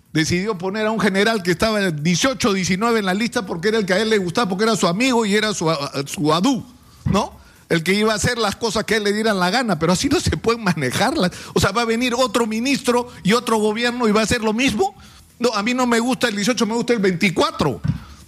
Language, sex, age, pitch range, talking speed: Spanish, male, 50-69, 170-225 Hz, 260 wpm